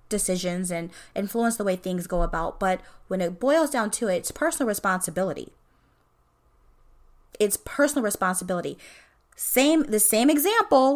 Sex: female